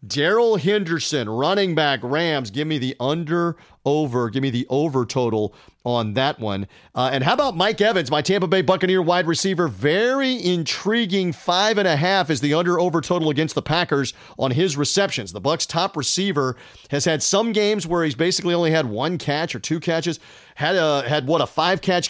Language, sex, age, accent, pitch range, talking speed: English, male, 40-59, American, 135-185 Hz, 195 wpm